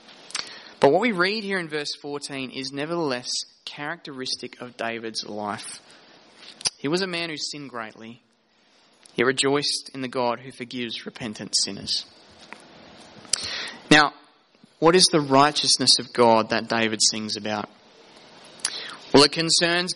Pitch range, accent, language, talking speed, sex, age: 125-175 Hz, Australian, English, 130 wpm, male, 20-39